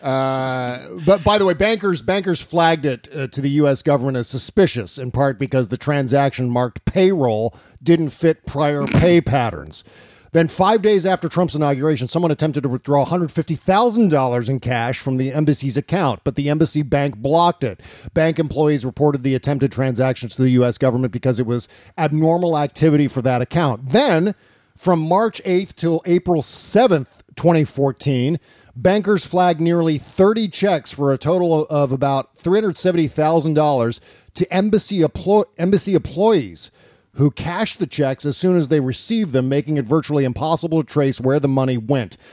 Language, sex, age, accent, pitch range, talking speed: English, male, 40-59, American, 130-170 Hz, 160 wpm